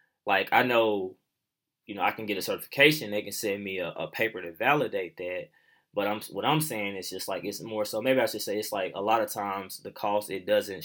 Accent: American